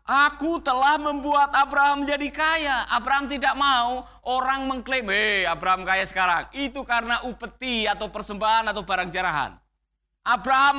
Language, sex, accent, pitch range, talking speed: Indonesian, male, native, 200-275 Hz, 135 wpm